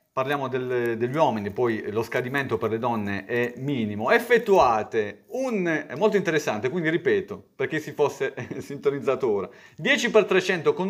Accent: native